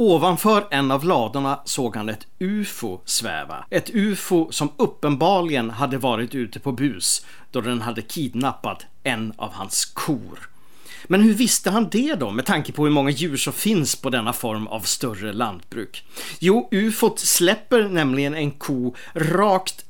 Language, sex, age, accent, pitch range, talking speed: English, male, 40-59, Swedish, 120-175 Hz, 155 wpm